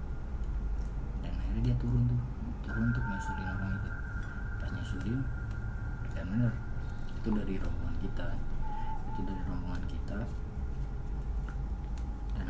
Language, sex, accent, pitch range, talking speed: Indonesian, male, native, 70-100 Hz, 105 wpm